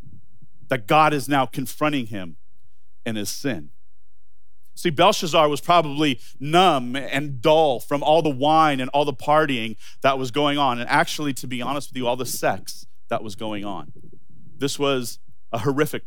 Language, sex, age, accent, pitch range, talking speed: English, male, 40-59, American, 100-150 Hz, 170 wpm